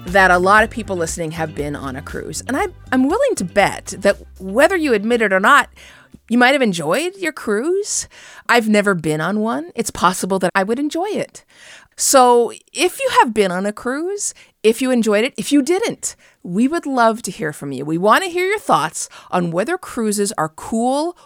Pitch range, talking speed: 165-250 Hz, 205 wpm